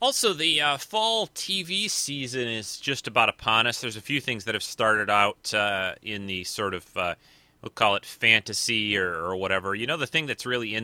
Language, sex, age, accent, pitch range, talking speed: English, male, 30-49, American, 95-120 Hz, 215 wpm